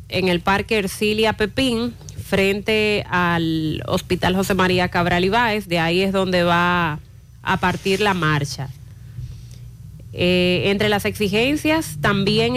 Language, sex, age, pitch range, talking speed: Spanish, female, 30-49, 175-225 Hz, 125 wpm